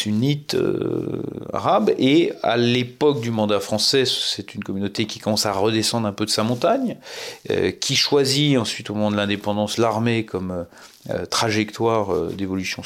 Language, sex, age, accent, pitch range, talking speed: French, male, 40-59, French, 90-125 Hz, 165 wpm